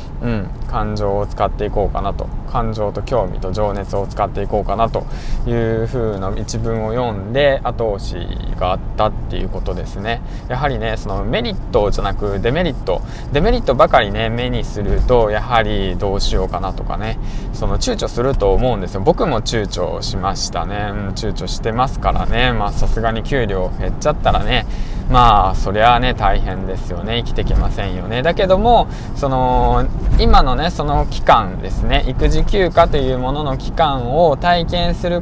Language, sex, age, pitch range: Japanese, male, 20-39, 100-130 Hz